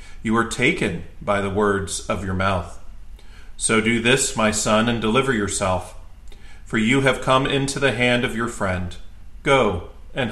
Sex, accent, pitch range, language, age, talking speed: male, American, 90-125 Hz, English, 40-59, 170 wpm